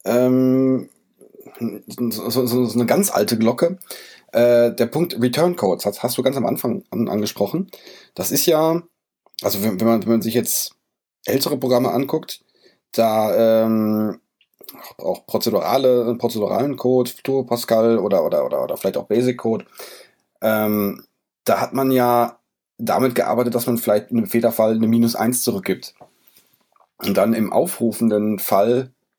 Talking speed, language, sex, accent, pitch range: 145 wpm, German, male, German, 115-125 Hz